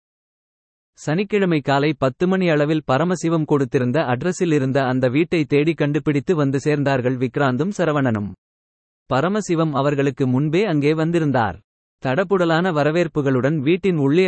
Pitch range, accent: 135-170 Hz, native